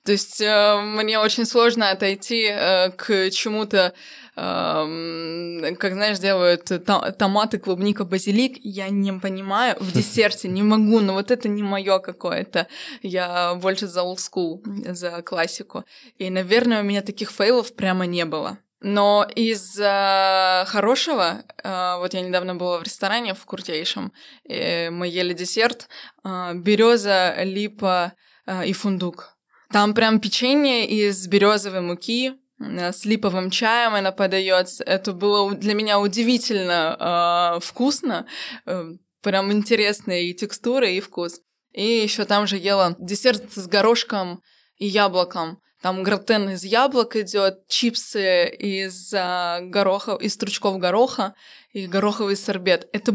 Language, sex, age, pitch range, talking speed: Russian, female, 20-39, 185-220 Hz, 130 wpm